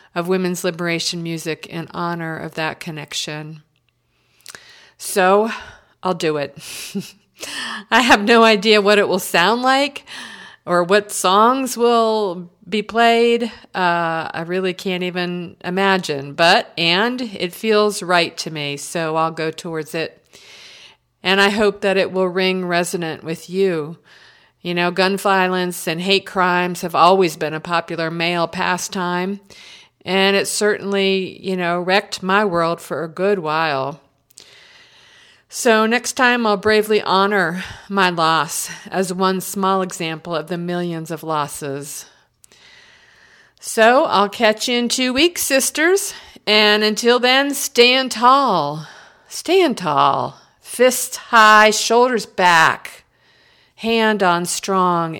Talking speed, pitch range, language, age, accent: 130 wpm, 165-215 Hz, English, 50-69, American